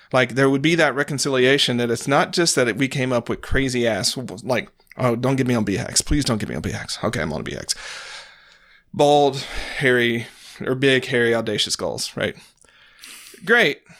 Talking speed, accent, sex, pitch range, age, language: 190 wpm, American, male, 120-145 Hz, 40-59, English